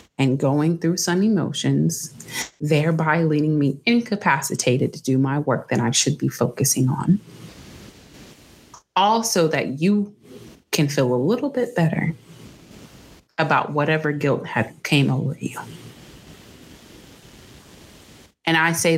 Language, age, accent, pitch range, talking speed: English, 30-49, American, 130-165 Hz, 120 wpm